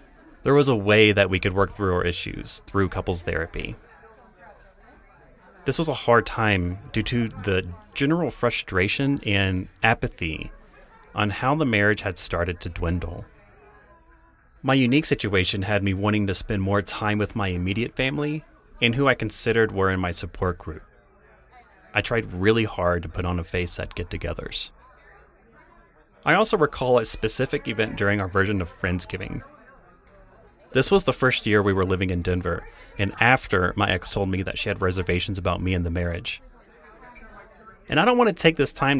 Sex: male